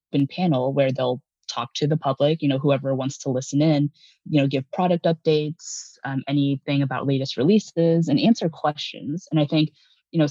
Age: 20-39